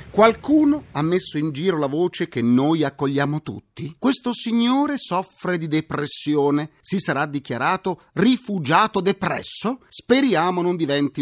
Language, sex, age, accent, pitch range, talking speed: Italian, male, 40-59, native, 145-215 Hz, 130 wpm